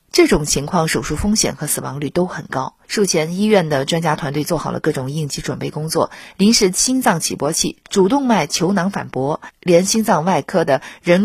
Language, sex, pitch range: Chinese, female, 145-200 Hz